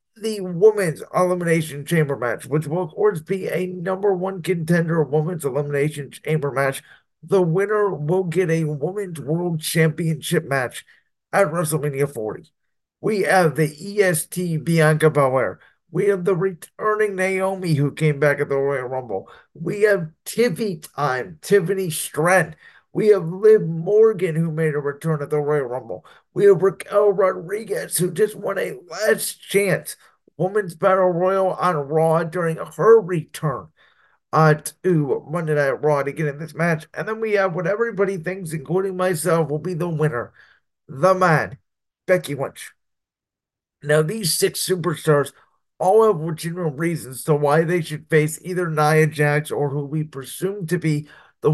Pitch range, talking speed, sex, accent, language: 150-190 Hz, 155 wpm, male, American, English